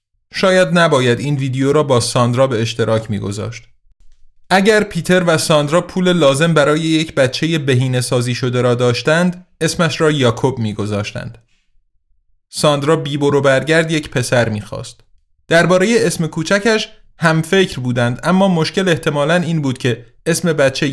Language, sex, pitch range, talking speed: Persian, male, 120-170 Hz, 135 wpm